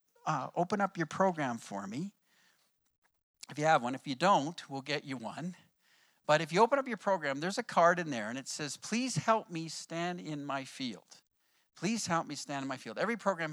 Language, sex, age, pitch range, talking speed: English, male, 50-69, 150-205 Hz, 215 wpm